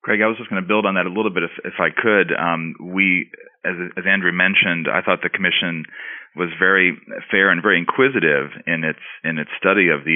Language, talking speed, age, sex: English, 230 wpm, 40-59, male